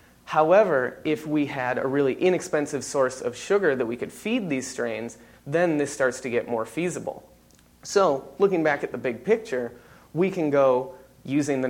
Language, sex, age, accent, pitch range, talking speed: English, male, 30-49, American, 130-180 Hz, 180 wpm